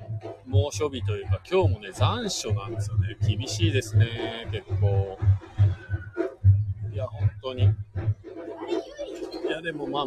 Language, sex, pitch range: Japanese, male, 100-115 Hz